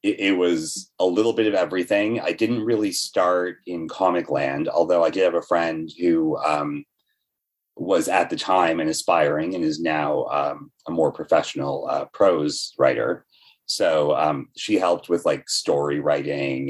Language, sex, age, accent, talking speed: English, male, 30-49, American, 165 wpm